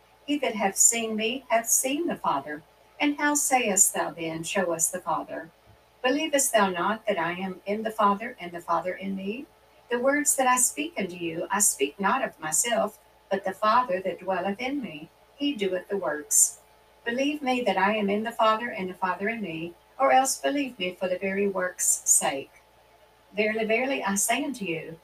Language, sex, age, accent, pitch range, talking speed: English, female, 60-79, American, 180-245 Hz, 200 wpm